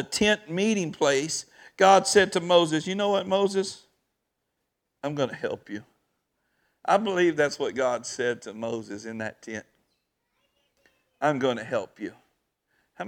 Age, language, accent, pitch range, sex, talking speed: 50-69, English, American, 115-195 Hz, male, 150 wpm